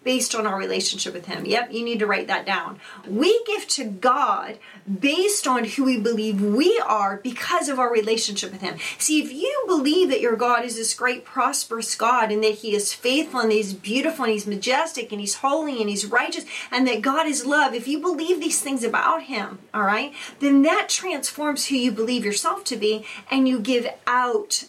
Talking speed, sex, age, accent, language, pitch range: 210 wpm, female, 30-49, American, English, 220-290 Hz